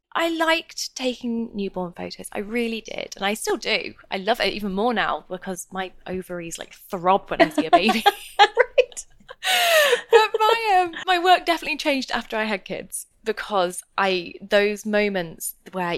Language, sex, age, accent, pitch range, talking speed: English, female, 20-39, British, 185-230 Hz, 170 wpm